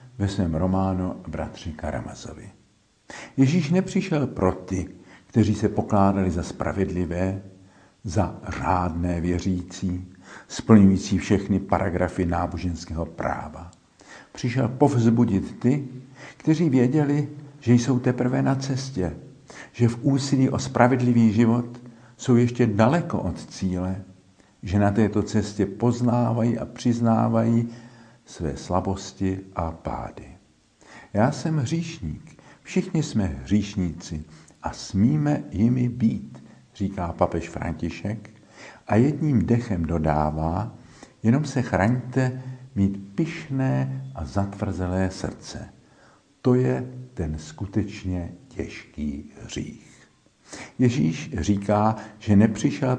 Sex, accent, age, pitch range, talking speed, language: male, native, 50-69, 95-125 Hz, 100 wpm, Czech